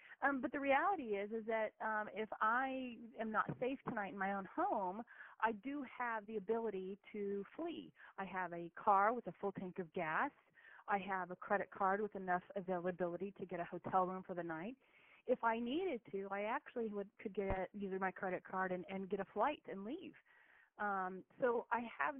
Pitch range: 180-220 Hz